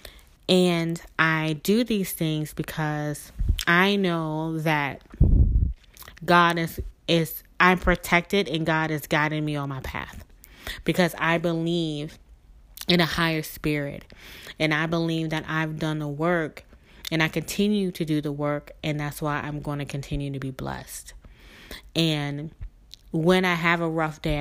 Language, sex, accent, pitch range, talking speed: English, female, American, 145-165 Hz, 150 wpm